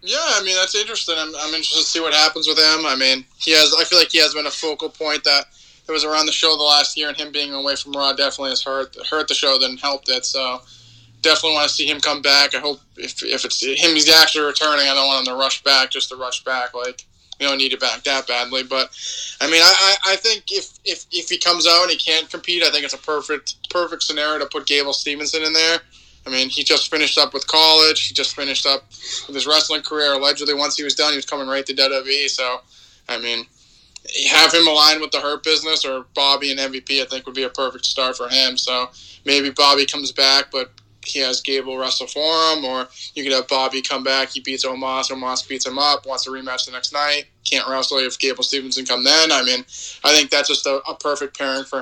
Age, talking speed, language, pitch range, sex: 20-39, 250 wpm, English, 130-155 Hz, male